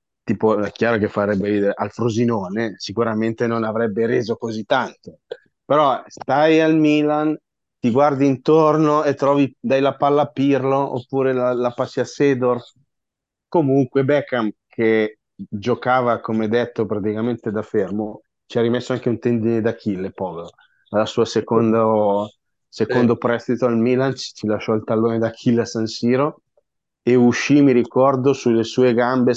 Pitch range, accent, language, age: 110-130 Hz, native, Italian, 30-49